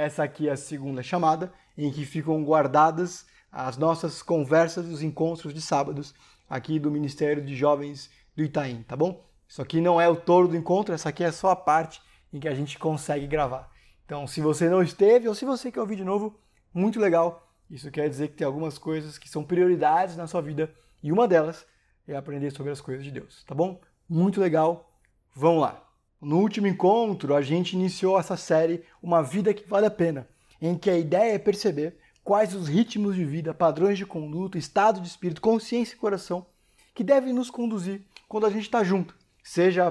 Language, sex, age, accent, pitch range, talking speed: Portuguese, male, 20-39, Brazilian, 155-200 Hz, 200 wpm